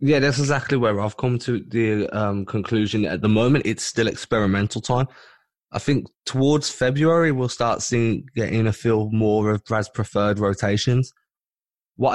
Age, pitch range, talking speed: 20-39, 105-130 Hz, 165 wpm